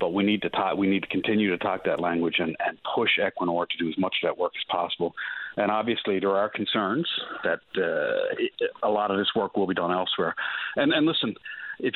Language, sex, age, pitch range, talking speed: English, male, 50-69, 95-115 Hz, 230 wpm